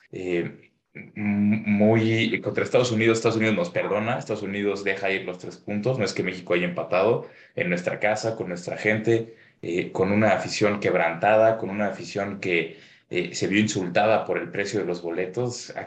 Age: 20-39